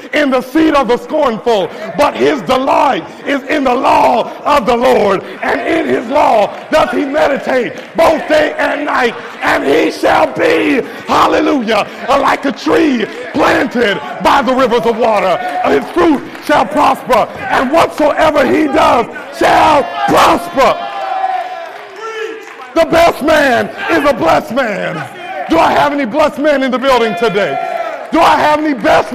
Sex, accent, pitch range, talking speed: male, American, 245-315 Hz, 150 wpm